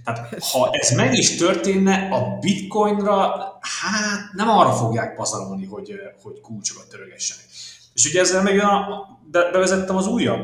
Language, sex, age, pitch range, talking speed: Hungarian, male, 30-49, 115-170 Hz, 145 wpm